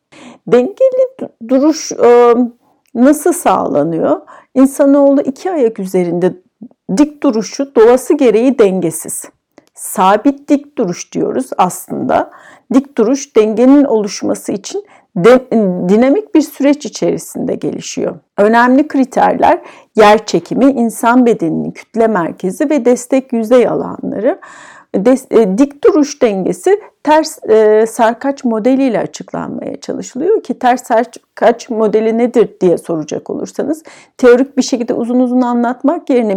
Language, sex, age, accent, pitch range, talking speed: Turkish, female, 60-79, native, 220-280 Hz, 105 wpm